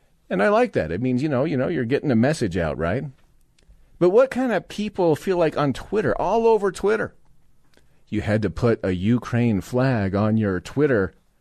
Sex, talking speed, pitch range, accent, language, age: male, 200 wpm, 120-160 Hz, American, English, 40-59